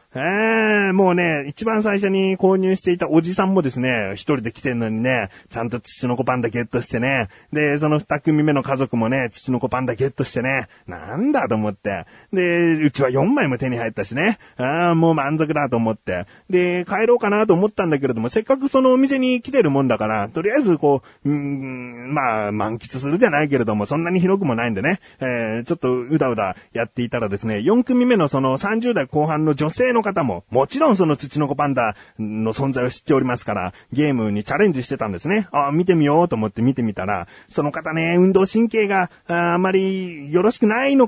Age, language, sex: 30-49, Japanese, male